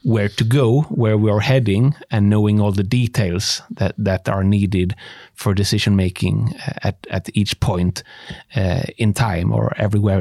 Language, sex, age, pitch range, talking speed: Danish, male, 30-49, 105-130 Hz, 160 wpm